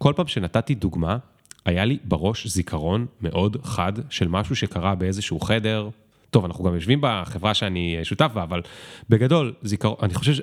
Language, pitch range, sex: Hebrew, 95-130 Hz, male